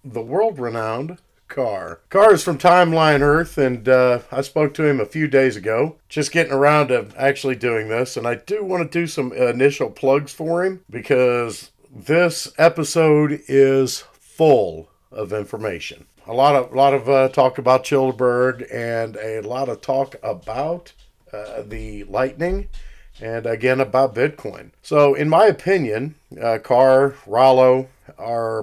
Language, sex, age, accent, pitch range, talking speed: English, male, 50-69, American, 120-150 Hz, 155 wpm